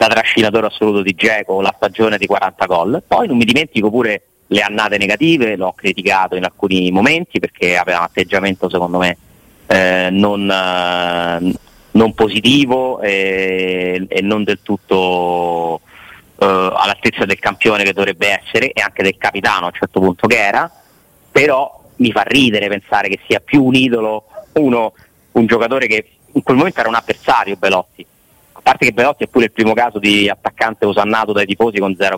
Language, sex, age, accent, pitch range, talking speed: Italian, male, 30-49, native, 95-120 Hz, 175 wpm